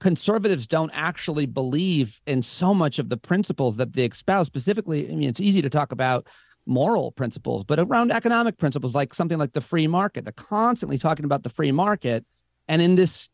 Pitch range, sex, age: 135-195 Hz, male, 40-59